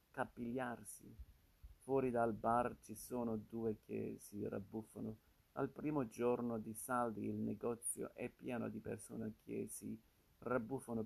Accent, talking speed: native, 130 wpm